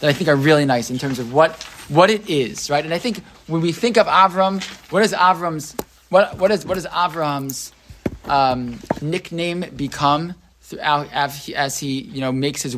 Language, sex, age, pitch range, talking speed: English, male, 20-39, 135-175 Hz, 200 wpm